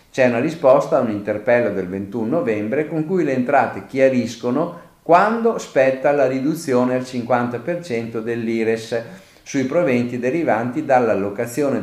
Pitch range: 105-150 Hz